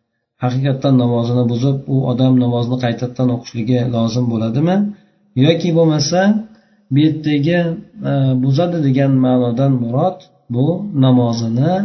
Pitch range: 120-145 Hz